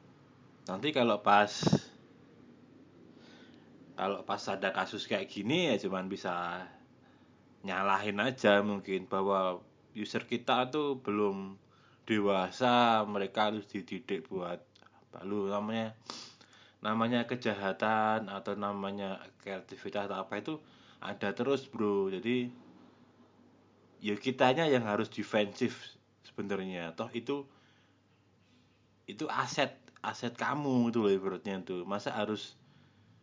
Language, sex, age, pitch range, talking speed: Indonesian, male, 20-39, 100-125 Hz, 105 wpm